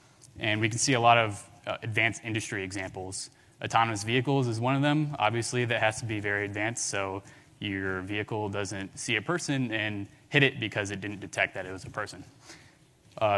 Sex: male